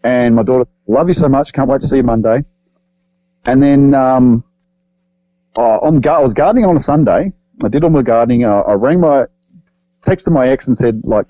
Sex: male